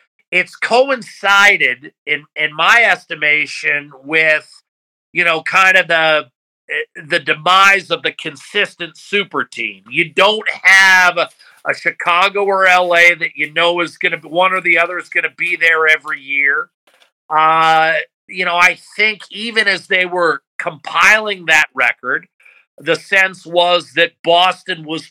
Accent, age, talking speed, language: American, 50-69, 150 wpm, English